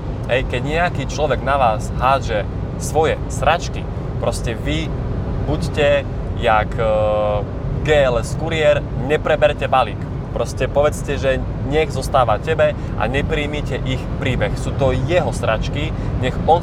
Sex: male